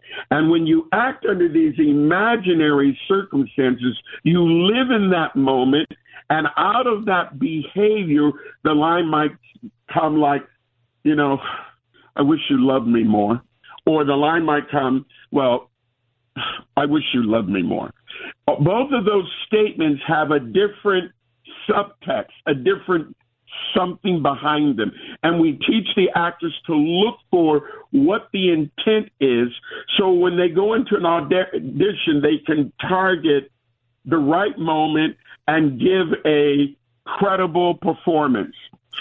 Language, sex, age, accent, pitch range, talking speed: English, male, 50-69, American, 140-190 Hz, 130 wpm